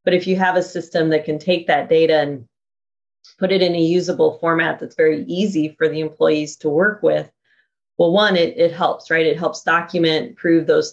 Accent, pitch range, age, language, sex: American, 160-195 Hz, 30-49, Chinese, female